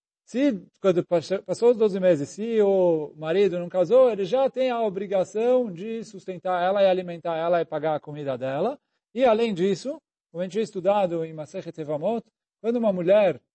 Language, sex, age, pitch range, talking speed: Portuguese, male, 40-59, 170-230 Hz, 185 wpm